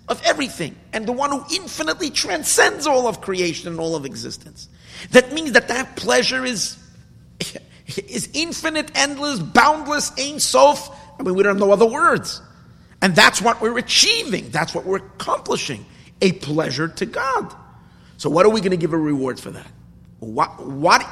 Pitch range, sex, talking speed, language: 125-200 Hz, male, 170 wpm, English